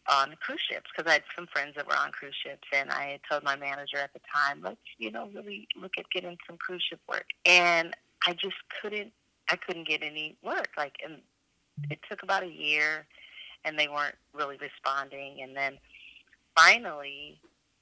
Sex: female